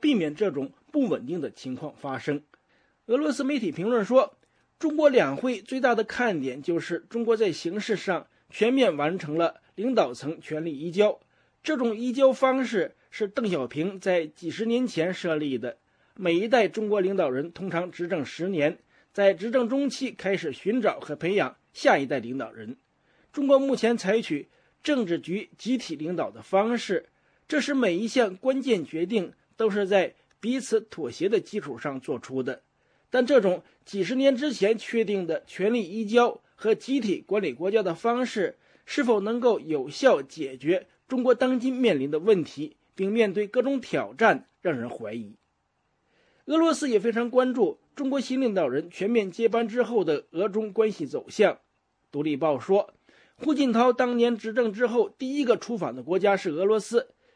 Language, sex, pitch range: English, male, 180-255 Hz